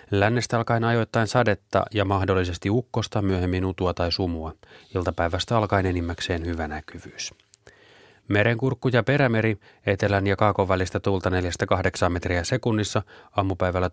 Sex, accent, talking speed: male, native, 120 wpm